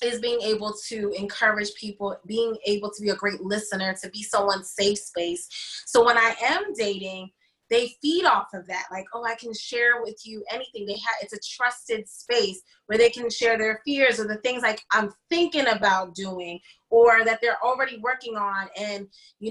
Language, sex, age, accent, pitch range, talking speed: English, female, 20-39, American, 200-230 Hz, 195 wpm